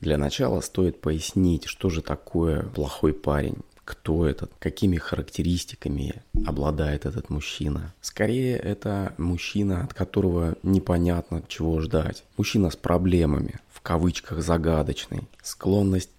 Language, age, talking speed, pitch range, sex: Russian, 20-39, 115 wpm, 80-95 Hz, male